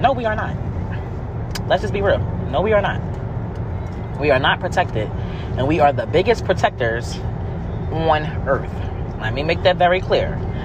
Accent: American